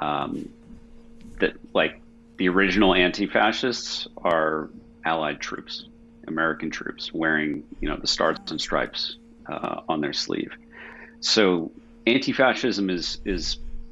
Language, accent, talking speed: English, American, 110 wpm